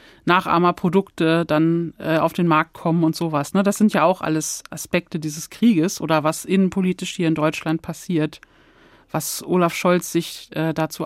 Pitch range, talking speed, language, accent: 165-195 Hz, 175 wpm, German, German